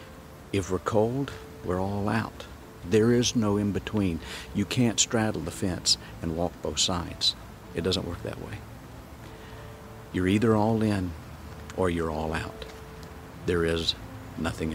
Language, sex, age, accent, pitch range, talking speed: English, male, 60-79, American, 85-100 Hz, 140 wpm